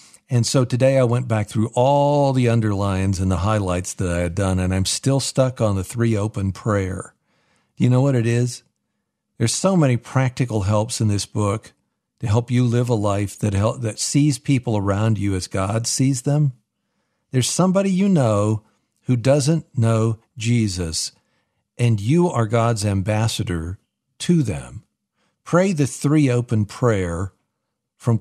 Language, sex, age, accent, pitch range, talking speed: English, male, 50-69, American, 105-130 Hz, 165 wpm